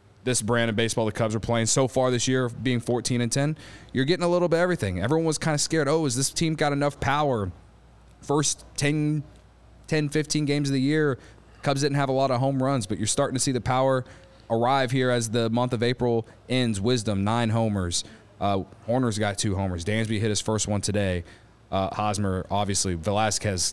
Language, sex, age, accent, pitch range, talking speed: English, male, 20-39, American, 100-125 Hz, 210 wpm